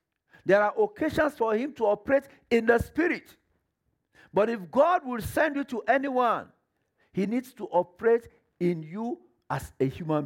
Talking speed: 160 wpm